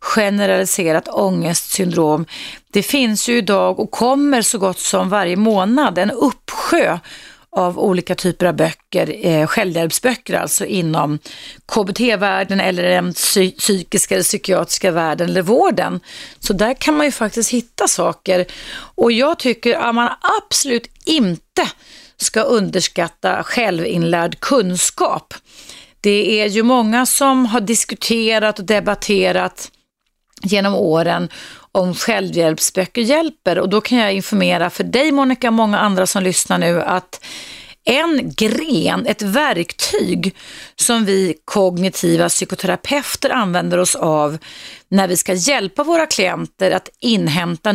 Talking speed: 125 wpm